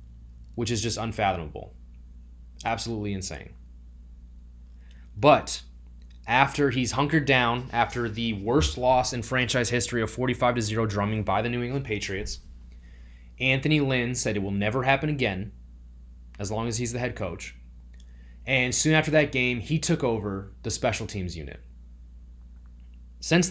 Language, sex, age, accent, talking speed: English, male, 20-39, American, 140 wpm